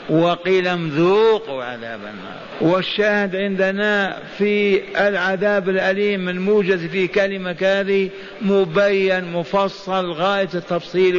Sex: male